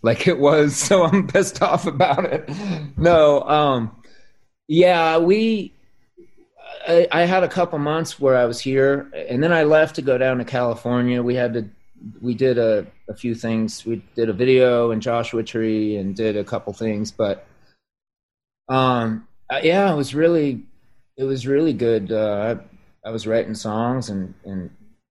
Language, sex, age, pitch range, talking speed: English, male, 30-49, 105-140 Hz, 170 wpm